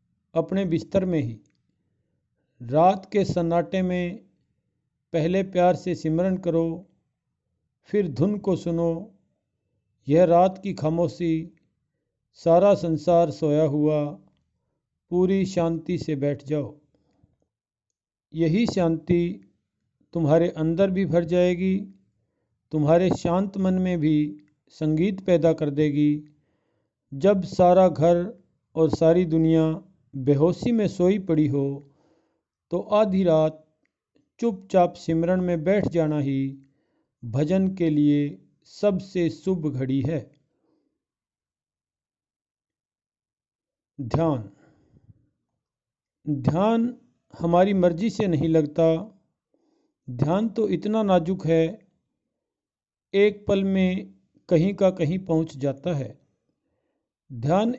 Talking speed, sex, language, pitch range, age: 100 wpm, male, English, 150-185 Hz, 50-69